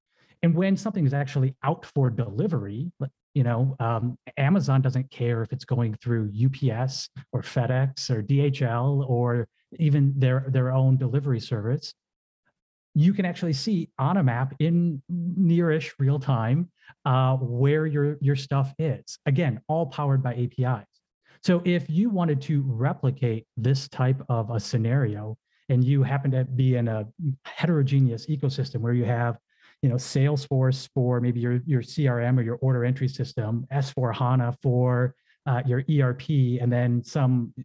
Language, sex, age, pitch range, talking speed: English, male, 30-49, 125-150 Hz, 155 wpm